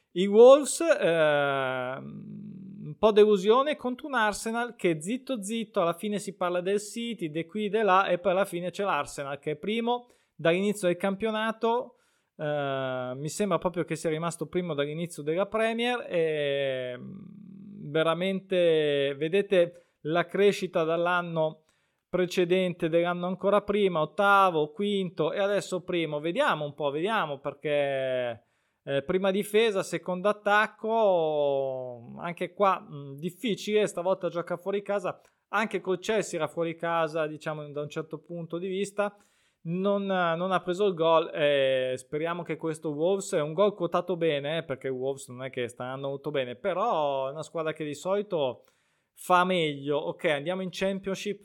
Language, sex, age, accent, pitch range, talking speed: Italian, male, 20-39, native, 150-200 Hz, 150 wpm